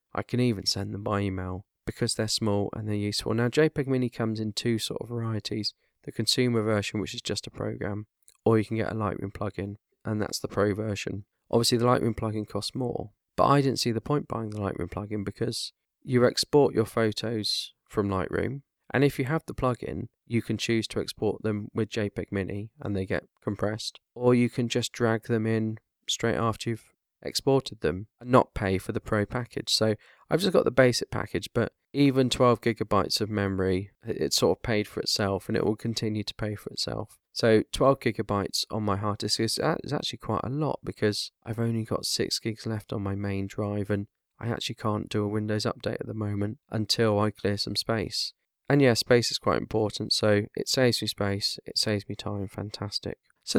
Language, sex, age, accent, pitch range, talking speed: English, male, 20-39, British, 105-120 Hz, 210 wpm